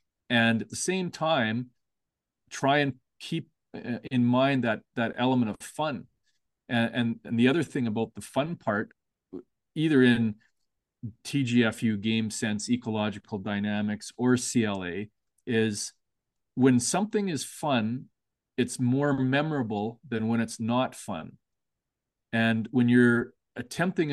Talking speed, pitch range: 125 wpm, 110-130 Hz